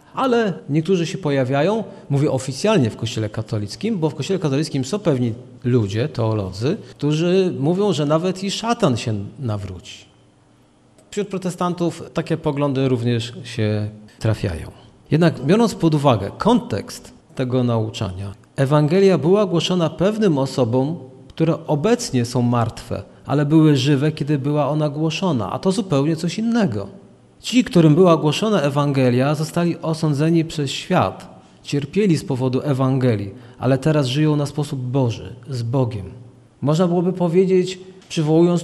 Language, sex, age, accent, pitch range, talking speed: Polish, male, 40-59, native, 125-180 Hz, 130 wpm